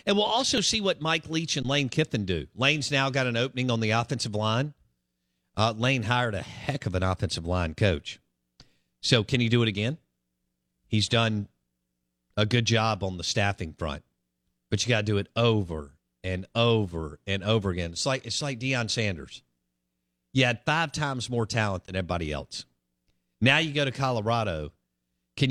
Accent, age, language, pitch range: American, 50-69, English, 80-125 Hz